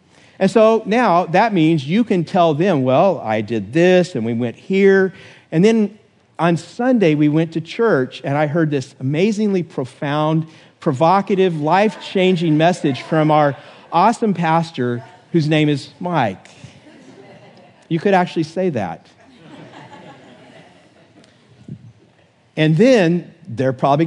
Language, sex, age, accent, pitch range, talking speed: English, male, 50-69, American, 135-185 Hz, 125 wpm